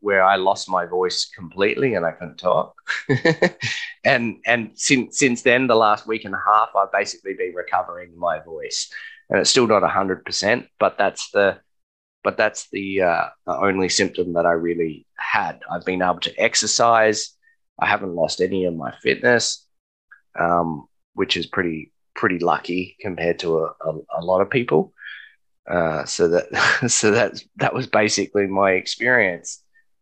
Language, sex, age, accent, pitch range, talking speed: English, male, 20-39, Australian, 85-115 Hz, 170 wpm